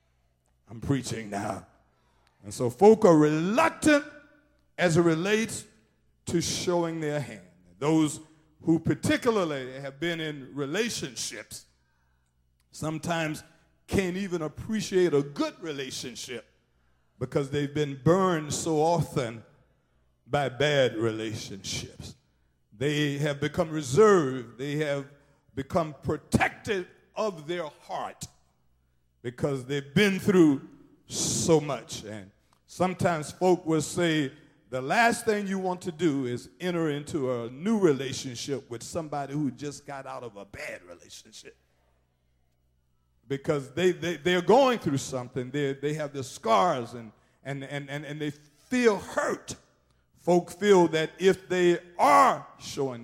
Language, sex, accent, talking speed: English, male, American, 125 wpm